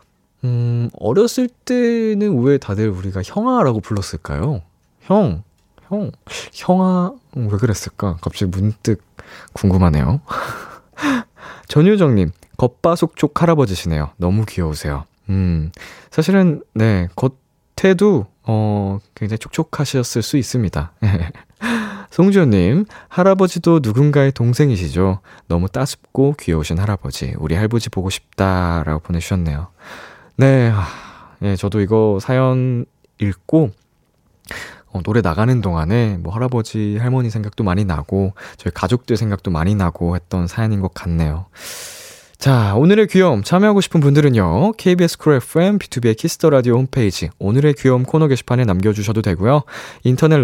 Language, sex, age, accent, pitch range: Korean, male, 20-39, native, 95-150 Hz